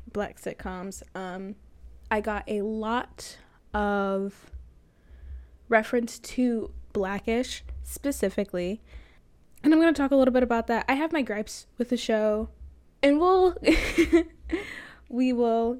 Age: 10-29